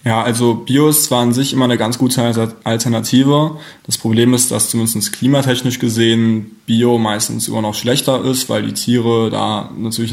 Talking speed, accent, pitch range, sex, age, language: 180 wpm, German, 110-125 Hz, male, 20-39, German